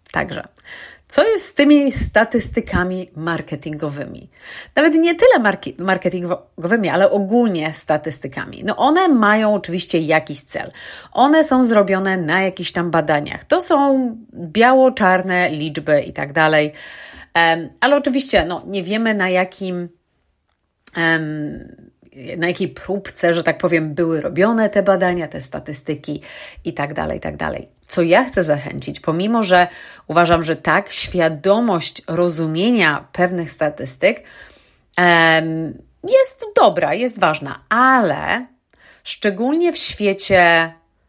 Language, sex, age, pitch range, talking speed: Polish, female, 30-49, 160-215 Hz, 120 wpm